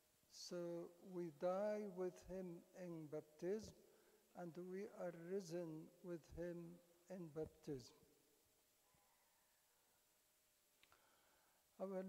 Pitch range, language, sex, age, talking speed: 180-220 Hz, English, male, 60-79, 80 wpm